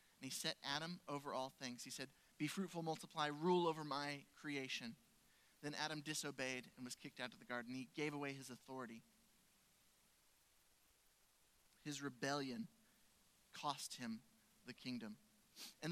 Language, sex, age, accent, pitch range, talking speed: English, male, 30-49, American, 140-200 Hz, 145 wpm